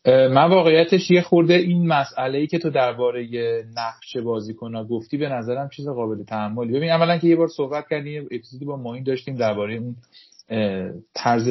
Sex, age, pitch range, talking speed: male, 30-49, 110-140 Hz, 170 wpm